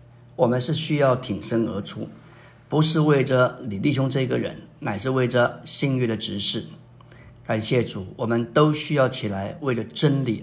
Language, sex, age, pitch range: Chinese, male, 50-69, 120-145 Hz